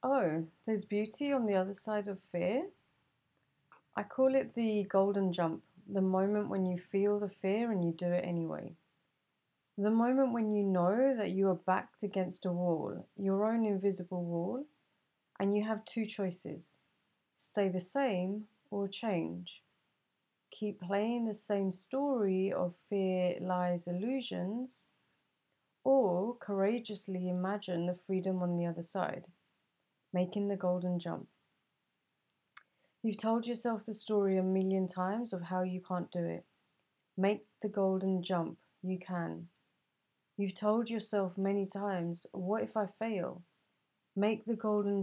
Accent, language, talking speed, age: British, English, 145 wpm, 30-49